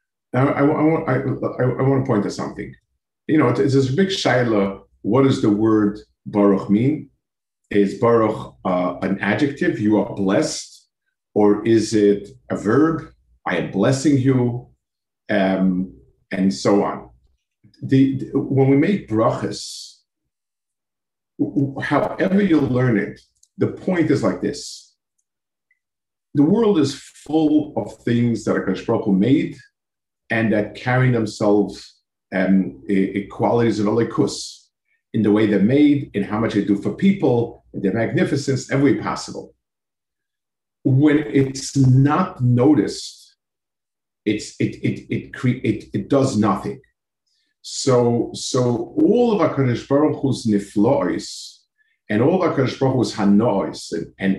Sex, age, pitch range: male, 50-69, 100-145 Hz